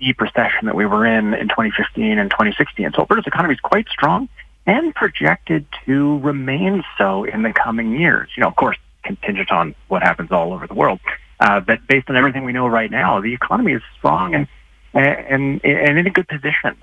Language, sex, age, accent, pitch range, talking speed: English, male, 30-49, American, 100-140 Hz, 205 wpm